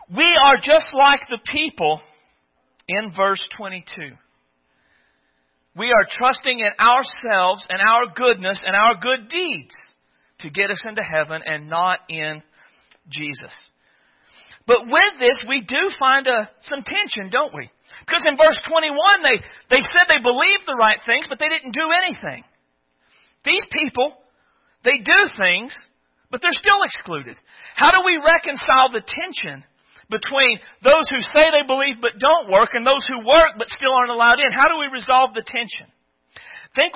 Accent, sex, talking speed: American, male, 155 wpm